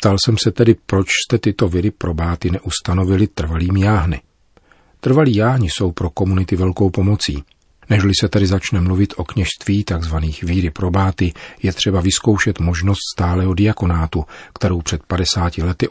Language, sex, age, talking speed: Czech, male, 40-59, 145 wpm